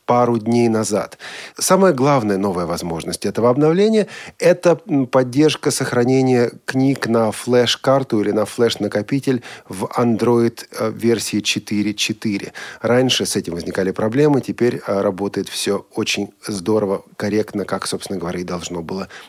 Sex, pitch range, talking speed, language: male, 100-135 Hz, 120 wpm, Russian